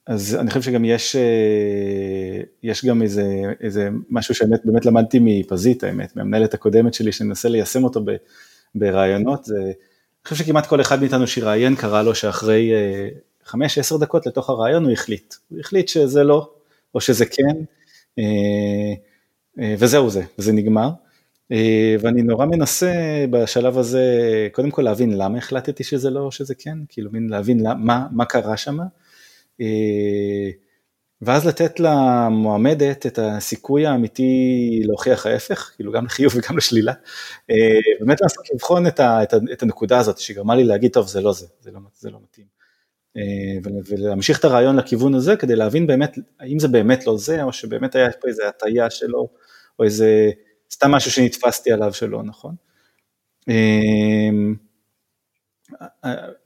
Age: 30-49